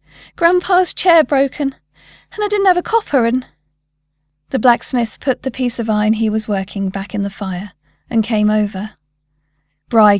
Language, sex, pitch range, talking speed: English, female, 150-235 Hz, 165 wpm